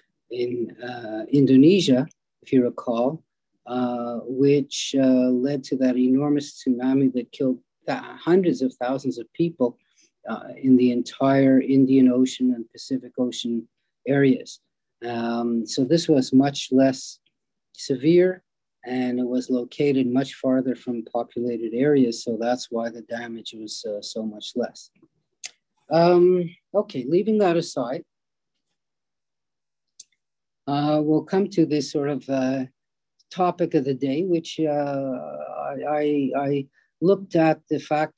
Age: 40-59